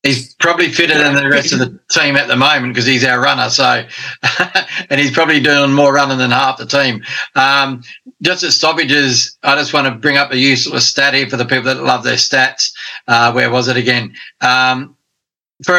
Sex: male